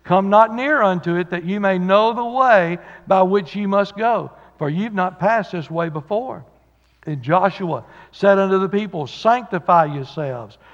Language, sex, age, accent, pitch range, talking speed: English, male, 60-79, American, 165-210 Hz, 180 wpm